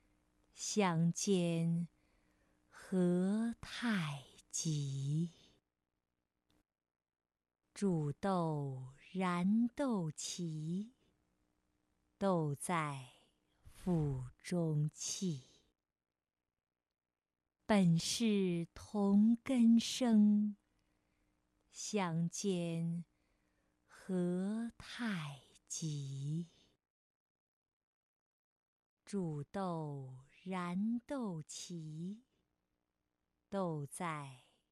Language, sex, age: Chinese, female, 50-69